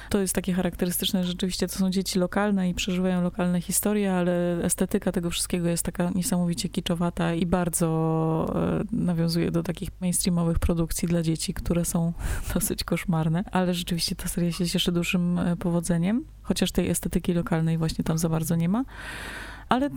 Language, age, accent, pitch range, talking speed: Polish, 20-39, native, 170-190 Hz, 165 wpm